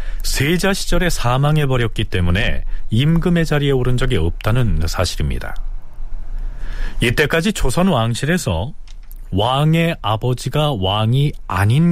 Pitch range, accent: 95-160 Hz, native